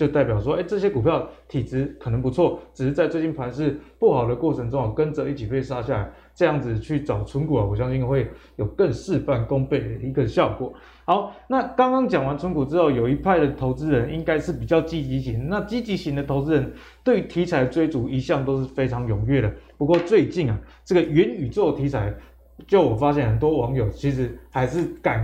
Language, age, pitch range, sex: Chinese, 20-39, 130-170 Hz, male